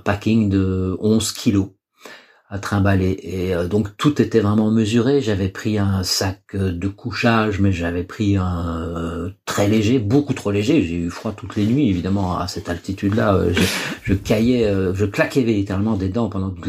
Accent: French